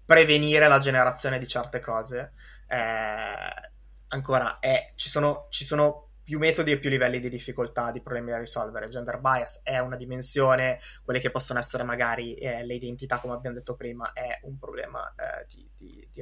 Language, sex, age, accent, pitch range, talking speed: Italian, male, 20-39, native, 125-145 Hz, 165 wpm